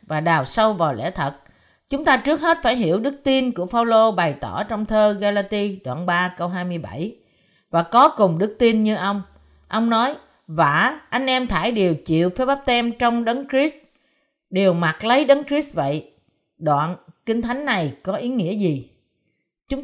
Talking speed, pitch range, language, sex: 185 wpm, 170-245 Hz, Vietnamese, female